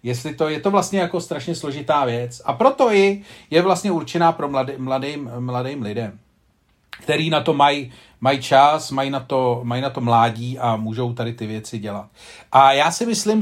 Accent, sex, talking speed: native, male, 190 wpm